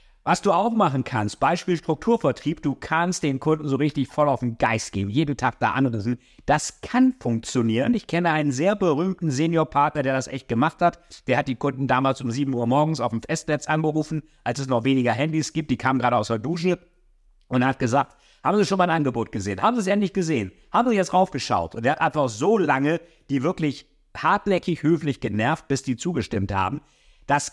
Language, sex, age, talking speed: German, male, 50-69, 205 wpm